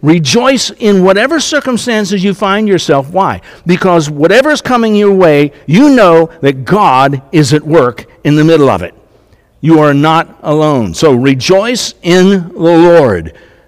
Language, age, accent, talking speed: English, 60-79, American, 150 wpm